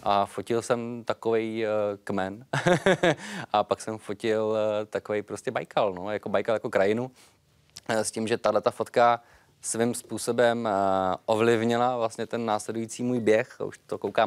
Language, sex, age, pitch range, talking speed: Czech, male, 20-39, 100-120 Hz, 155 wpm